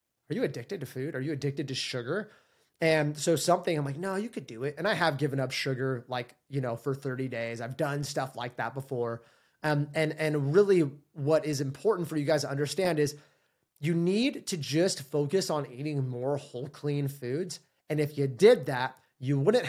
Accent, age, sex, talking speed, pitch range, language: American, 20-39, male, 210 wpm, 140-180 Hz, English